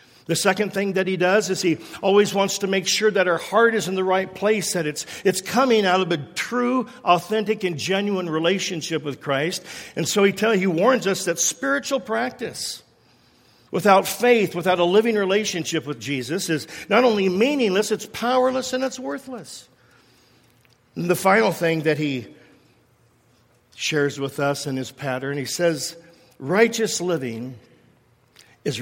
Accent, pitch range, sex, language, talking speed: American, 145-205 Hz, male, English, 165 wpm